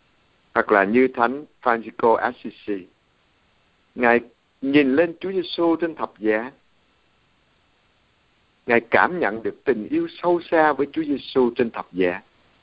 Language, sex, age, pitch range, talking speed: Vietnamese, male, 60-79, 110-145 Hz, 135 wpm